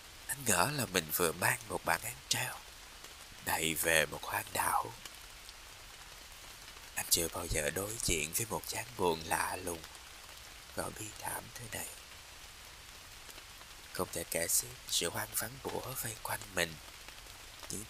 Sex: male